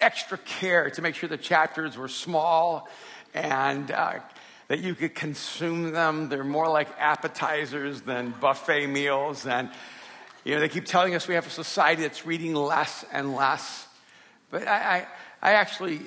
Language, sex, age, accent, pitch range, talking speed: English, male, 50-69, American, 140-170 Hz, 165 wpm